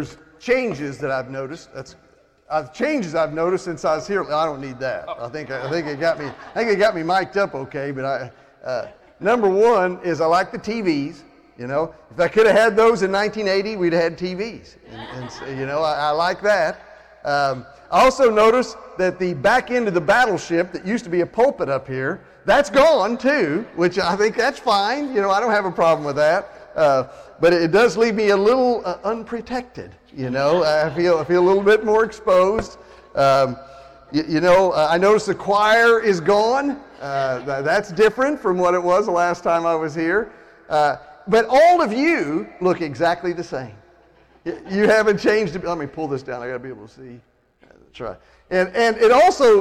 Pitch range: 155-215 Hz